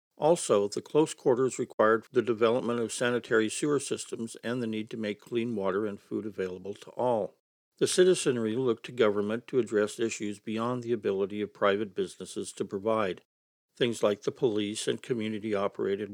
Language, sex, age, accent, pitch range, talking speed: English, male, 60-79, American, 105-125 Hz, 165 wpm